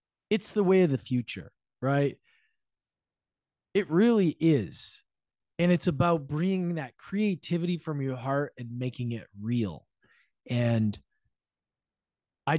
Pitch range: 115-165 Hz